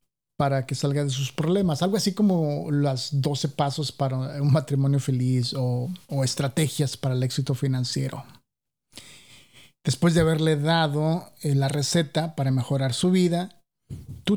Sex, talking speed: male, 140 wpm